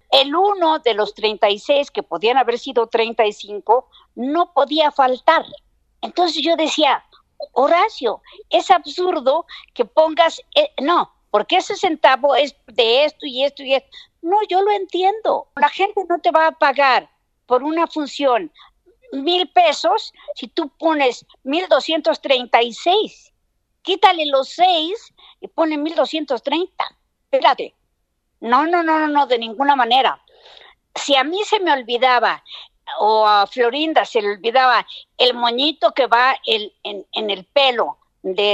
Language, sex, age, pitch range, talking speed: Spanish, female, 50-69, 255-345 Hz, 135 wpm